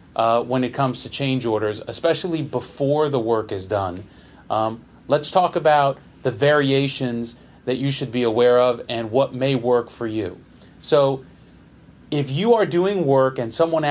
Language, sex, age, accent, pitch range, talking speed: English, male, 30-49, American, 120-145 Hz, 170 wpm